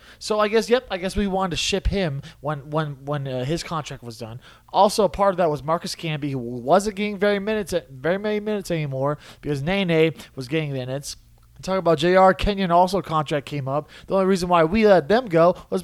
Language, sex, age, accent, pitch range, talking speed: English, male, 20-39, American, 160-240 Hz, 225 wpm